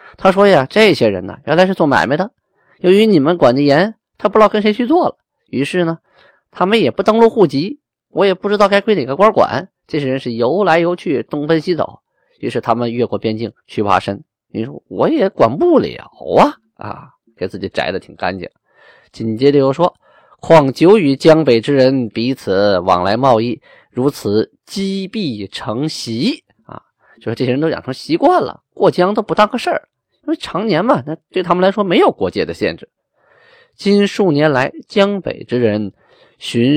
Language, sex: Chinese, male